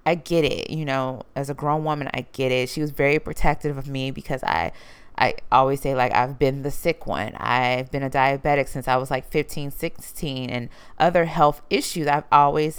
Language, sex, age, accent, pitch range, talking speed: English, female, 20-39, American, 140-165 Hz, 210 wpm